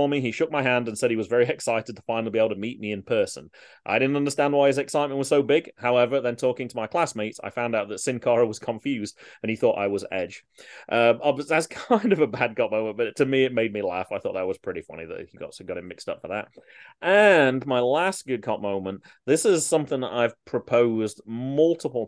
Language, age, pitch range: English, 30-49, 105-135 Hz